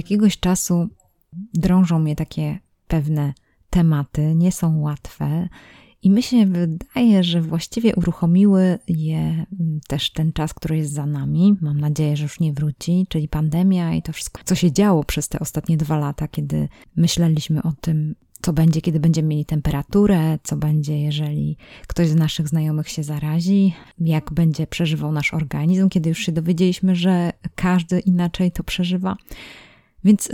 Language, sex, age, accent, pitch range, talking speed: Polish, female, 20-39, native, 155-185 Hz, 155 wpm